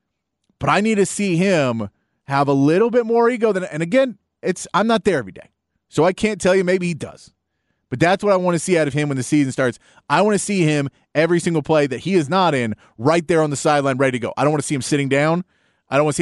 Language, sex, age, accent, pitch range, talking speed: English, male, 30-49, American, 135-180 Hz, 280 wpm